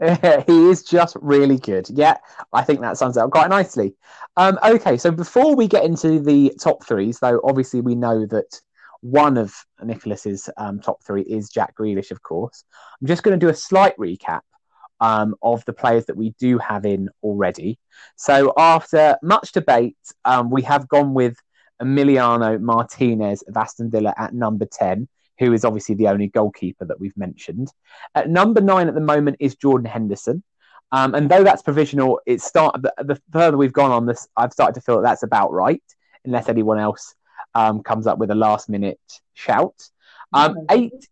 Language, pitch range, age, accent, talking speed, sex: English, 110-155 Hz, 20-39, British, 185 wpm, male